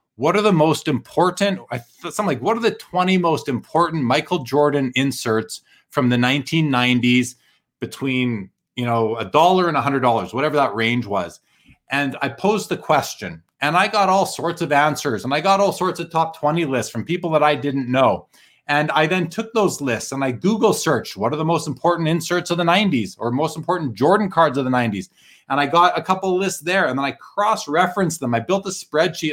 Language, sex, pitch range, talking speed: English, male, 125-180 Hz, 215 wpm